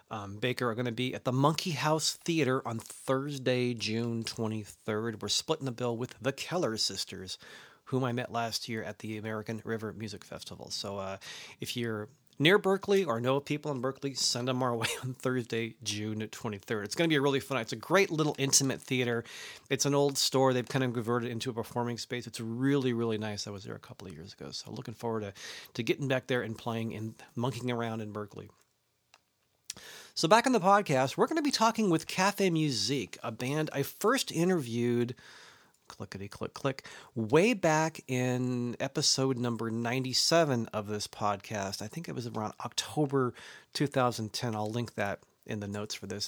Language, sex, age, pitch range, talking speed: English, male, 40-59, 115-140 Hz, 195 wpm